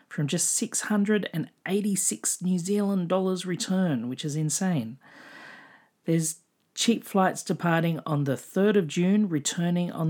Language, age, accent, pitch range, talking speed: English, 40-59, Australian, 145-195 Hz, 125 wpm